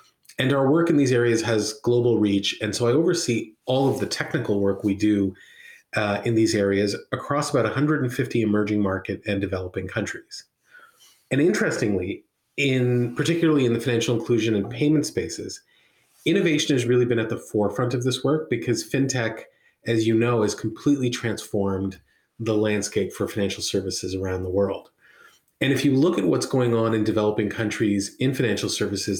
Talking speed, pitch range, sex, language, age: 170 wpm, 105-135 Hz, male, English, 30-49